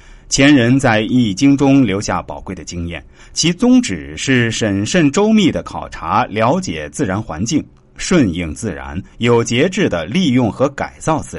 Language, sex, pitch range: Chinese, male, 95-155 Hz